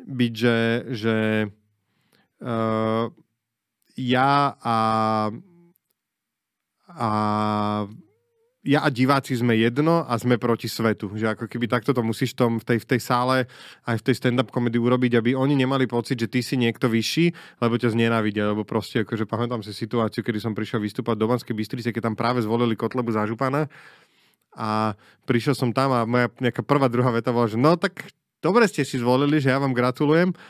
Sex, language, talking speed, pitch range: male, Slovak, 175 wpm, 115-145 Hz